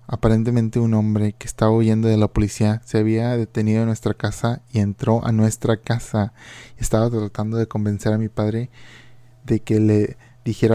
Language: Spanish